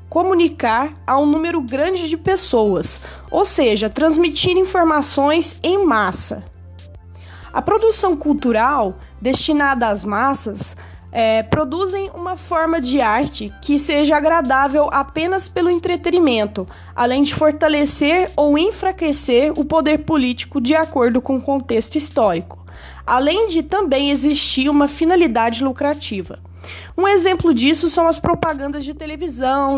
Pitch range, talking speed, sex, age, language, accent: 250-330 Hz, 120 wpm, female, 20-39, Portuguese, Brazilian